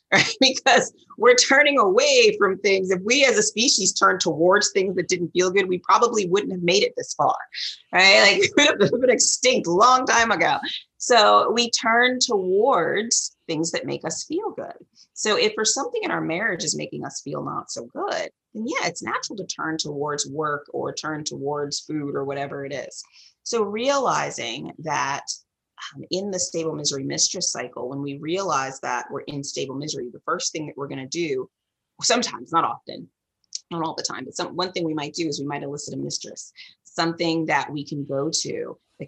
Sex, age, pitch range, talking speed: female, 30-49, 145-230 Hz, 200 wpm